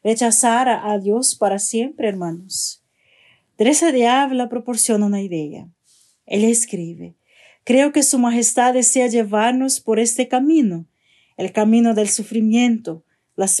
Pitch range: 215-265 Hz